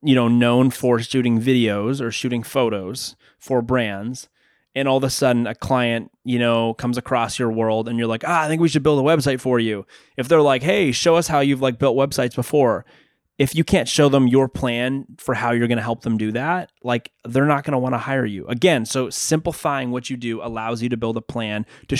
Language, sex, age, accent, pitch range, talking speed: English, male, 20-39, American, 115-135 Hz, 235 wpm